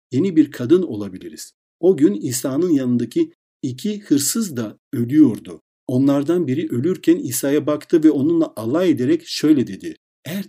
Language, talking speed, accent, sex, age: Turkish, 135 wpm, native, male, 60-79